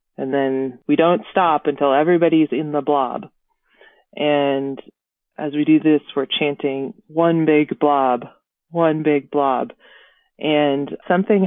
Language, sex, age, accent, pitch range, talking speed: English, female, 20-39, American, 135-170 Hz, 130 wpm